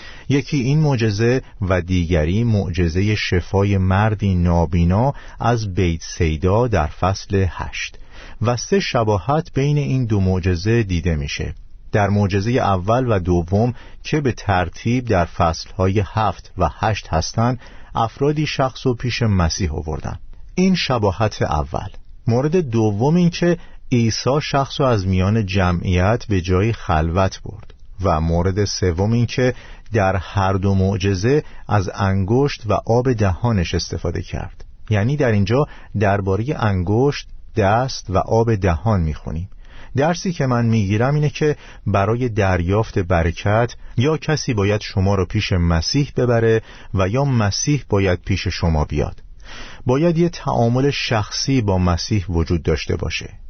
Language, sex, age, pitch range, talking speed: Persian, male, 50-69, 90-120 Hz, 135 wpm